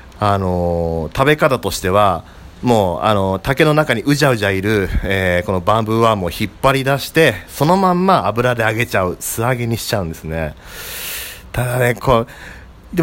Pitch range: 90-135 Hz